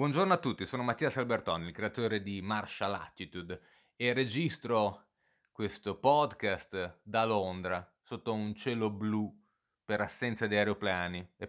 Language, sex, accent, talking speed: Italian, male, native, 140 wpm